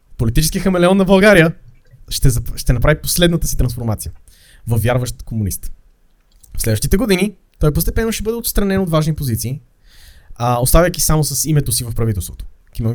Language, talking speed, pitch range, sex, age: Bulgarian, 155 wpm, 110-155 Hz, male, 20-39